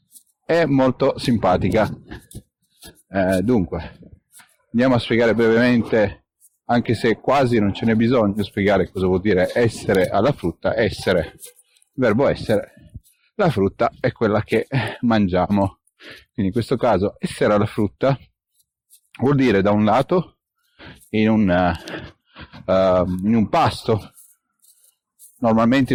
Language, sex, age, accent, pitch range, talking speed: Italian, male, 40-59, native, 100-125 Hz, 115 wpm